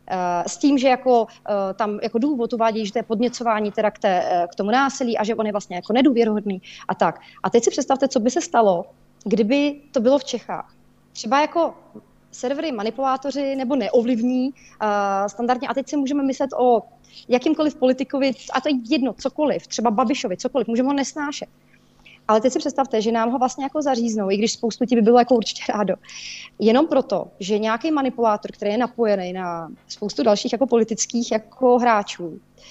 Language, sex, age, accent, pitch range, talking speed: Czech, female, 30-49, native, 215-265 Hz, 180 wpm